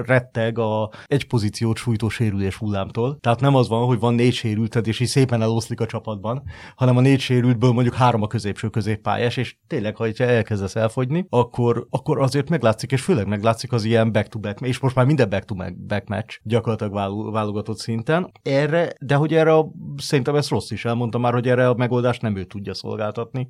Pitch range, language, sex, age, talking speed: 100-125 Hz, Hungarian, male, 30-49, 195 wpm